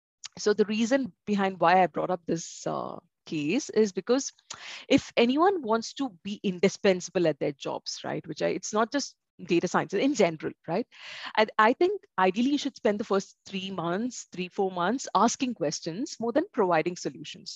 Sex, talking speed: female, 180 wpm